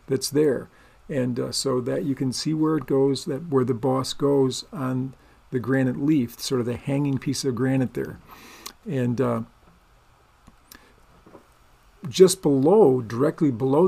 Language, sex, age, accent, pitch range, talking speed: English, male, 50-69, American, 130-150 Hz, 150 wpm